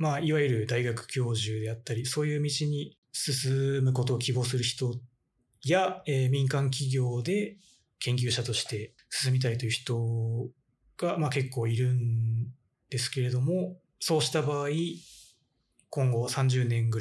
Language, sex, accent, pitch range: Japanese, male, native, 115-145 Hz